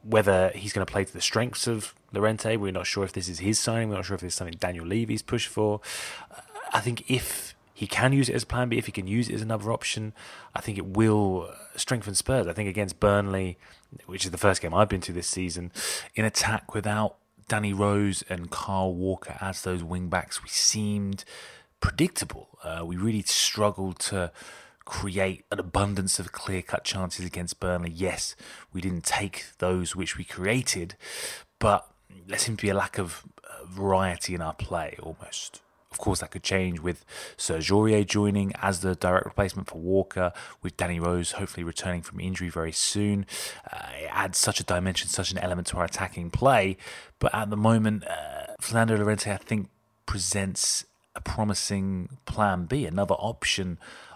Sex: male